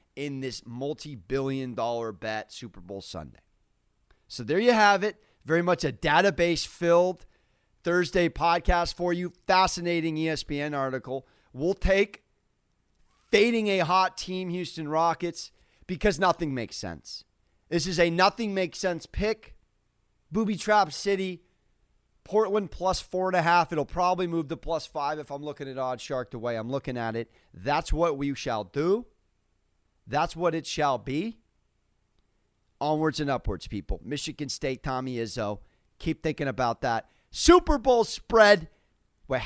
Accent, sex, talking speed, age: American, male, 150 wpm, 30-49